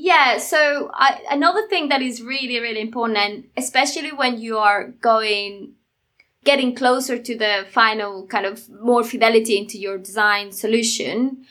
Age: 20-39